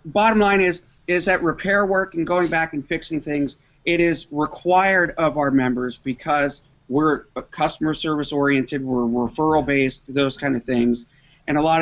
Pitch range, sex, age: 135-155 Hz, male, 40-59